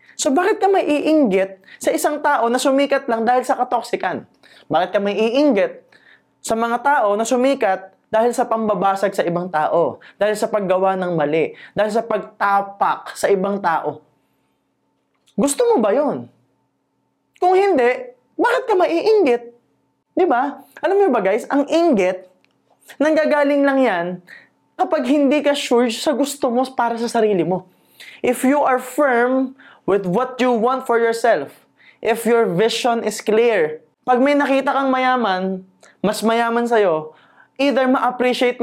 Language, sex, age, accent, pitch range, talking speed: Filipino, male, 20-39, native, 185-265 Hz, 150 wpm